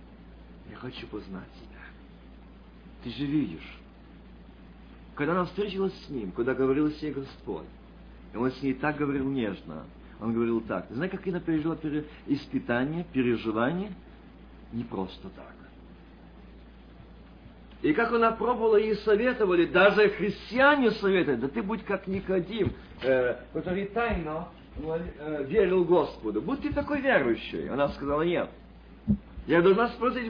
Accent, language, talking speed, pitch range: native, Russian, 125 wpm, 130-205 Hz